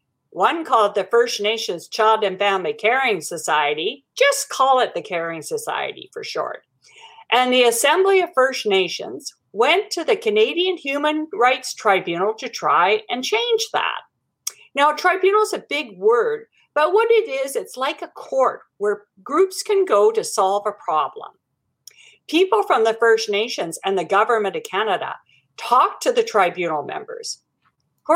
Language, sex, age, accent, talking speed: English, female, 50-69, American, 160 wpm